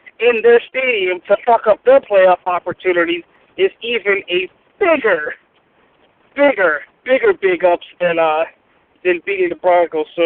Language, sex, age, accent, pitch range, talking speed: English, male, 50-69, American, 185-300 Hz, 135 wpm